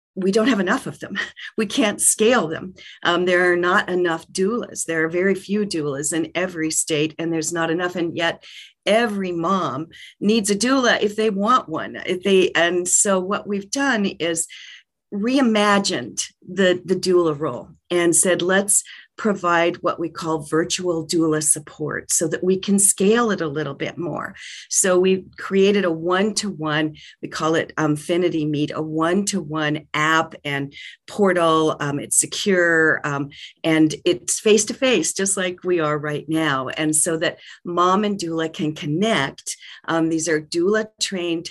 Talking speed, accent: 165 wpm, American